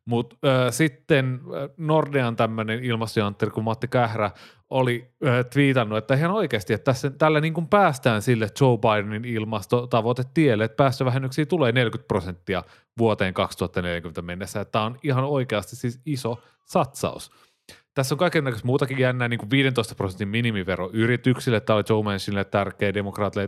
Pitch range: 105-125 Hz